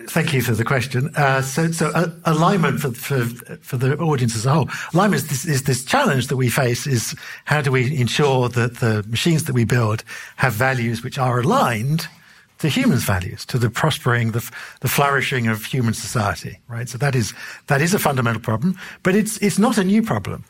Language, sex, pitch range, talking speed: English, male, 120-150 Hz, 205 wpm